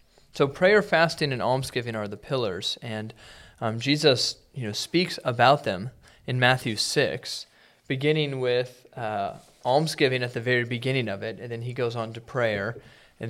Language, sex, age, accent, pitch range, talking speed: English, male, 30-49, American, 110-135 Hz, 165 wpm